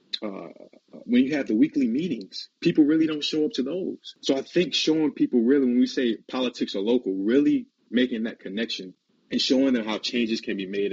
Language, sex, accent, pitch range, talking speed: English, male, American, 105-145 Hz, 210 wpm